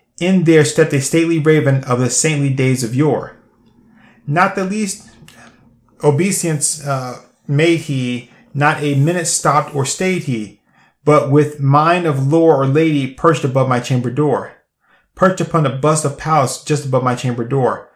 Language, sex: English, male